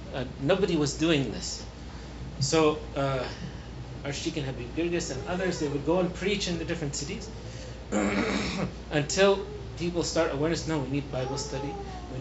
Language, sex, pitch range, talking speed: English, male, 135-165 Hz, 155 wpm